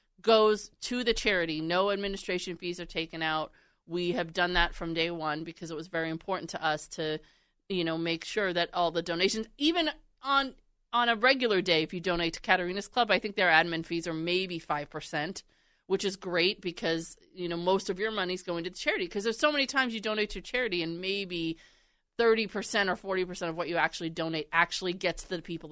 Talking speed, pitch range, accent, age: 220 wpm, 165-220 Hz, American, 30-49